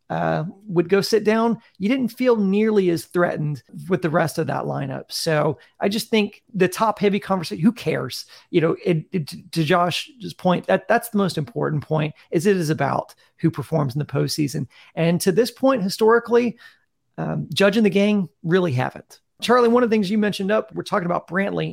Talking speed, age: 200 wpm, 40-59